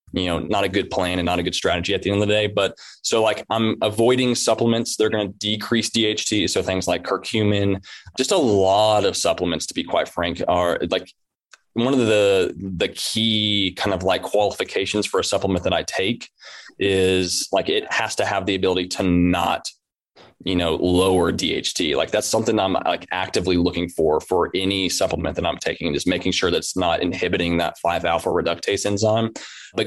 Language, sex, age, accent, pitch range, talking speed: English, male, 20-39, American, 95-115 Hz, 195 wpm